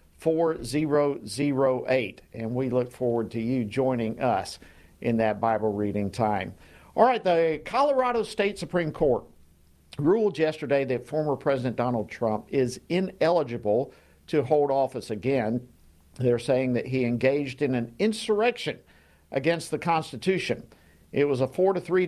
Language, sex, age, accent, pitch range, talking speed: English, male, 50-69, American, 120-160 Hz, 140 wpm